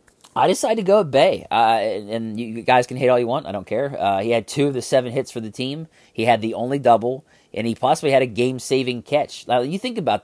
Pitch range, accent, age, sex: 105-140 Hz, American, 30-49, male